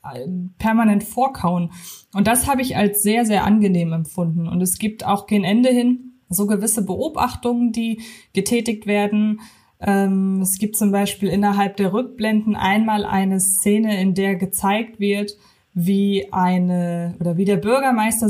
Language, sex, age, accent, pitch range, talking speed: German, female, 20-39, German, 190-225 Hz, 145 wpm